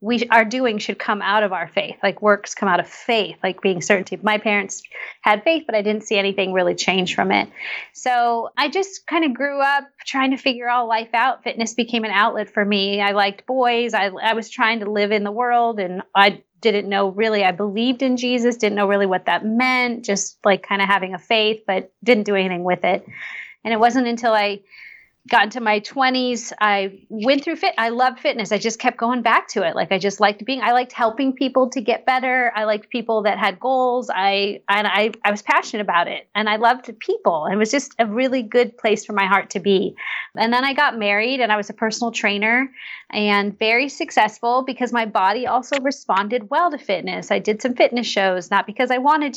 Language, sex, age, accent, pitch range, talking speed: English, female, 30-49, American, 205-250 Hz, 225 wpm